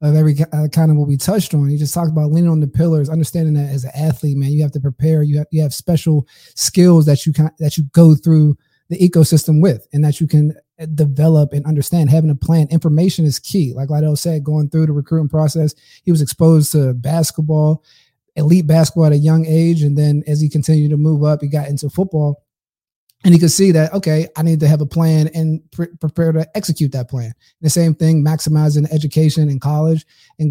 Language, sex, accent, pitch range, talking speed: English, male, American, 150-165 Hz, 225 wpm